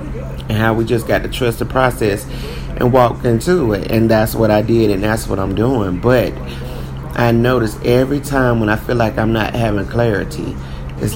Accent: American